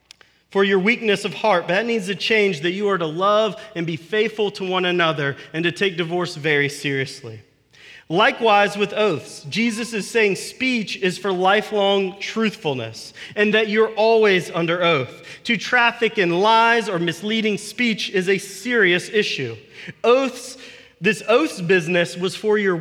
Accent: American